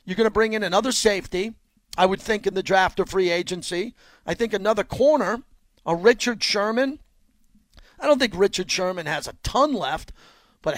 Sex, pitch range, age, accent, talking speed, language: male, 185-225 Hz, 50-69, American, 185 wpm, English